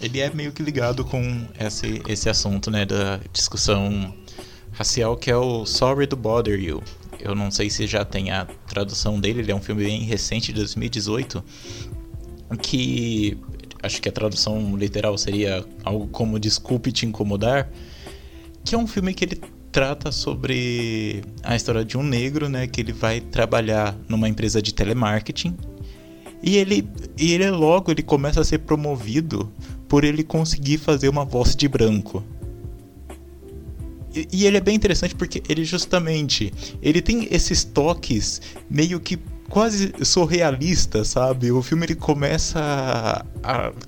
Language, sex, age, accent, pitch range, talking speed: Portuguese, male, 20-39, Brazilian, 105-155 Hz, 155 wpm